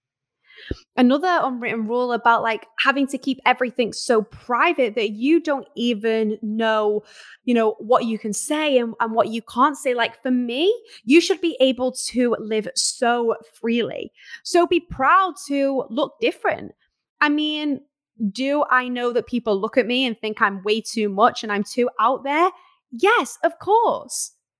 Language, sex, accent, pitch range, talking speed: English, female, British, 235-320 Hz, 170 wpm